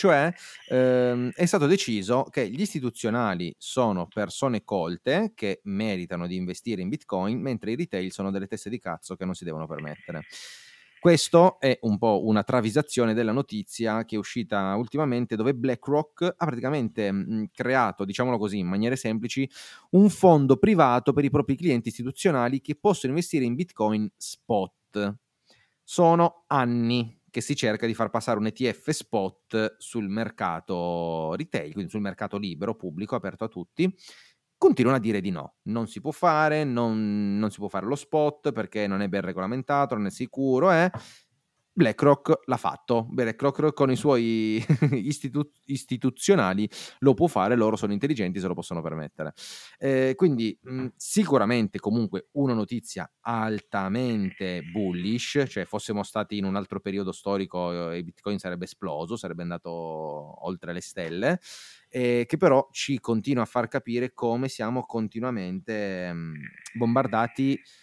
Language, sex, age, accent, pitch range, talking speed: Italian, male, 30-49, native, 105-140 Hz, 150 wpm